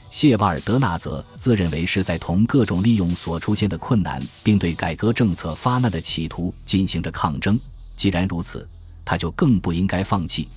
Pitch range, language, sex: 85-110 Hz, Chinese, male